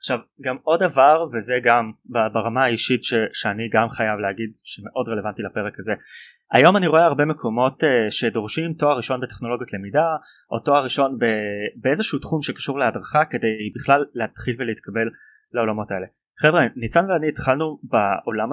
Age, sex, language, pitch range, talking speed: 20-39, male, Hebrew, 115-150 Hz, 145 wpm